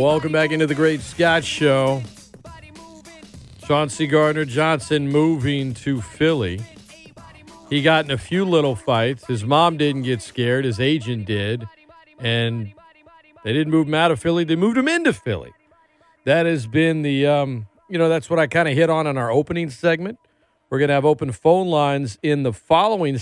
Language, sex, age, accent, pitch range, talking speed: English, male, 40-59, American, 130-170 Hz, 180 wpm